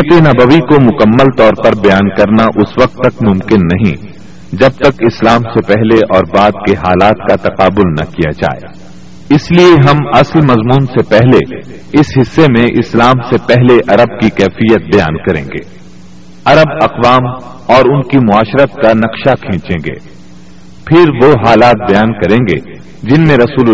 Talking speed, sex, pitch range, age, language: 160 wpm, male, 95-130 Hz, 50-69, Urdu